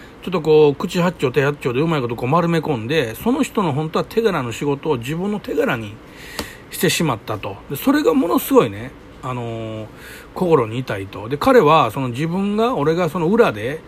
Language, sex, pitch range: Japanese, male, 140-215 Hz